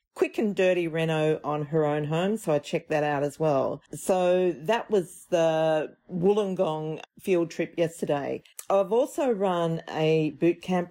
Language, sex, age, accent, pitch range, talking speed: English, female, 40-59, Australian, 145-180 Hz, 160 wpm